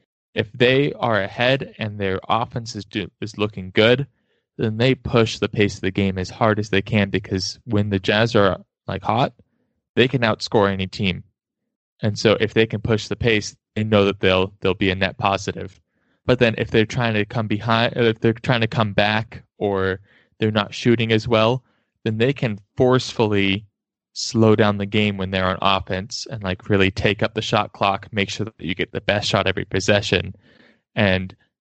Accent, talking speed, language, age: American, 200 wpm, English, 20-39